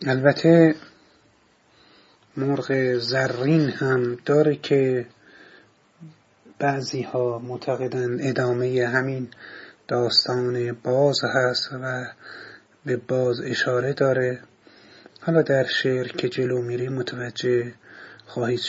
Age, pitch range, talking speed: 30-49, 125-140 Hz, 85 wpm